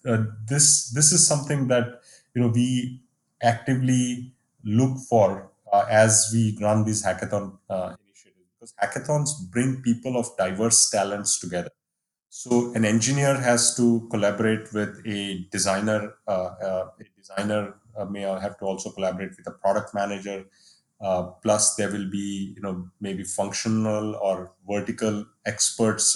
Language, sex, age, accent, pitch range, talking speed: English, male, 30-49, Indian, 100-120 Hz, 140 wpm